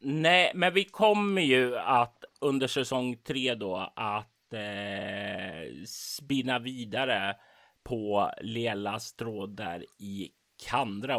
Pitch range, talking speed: 100-125 Hz, 105 wpm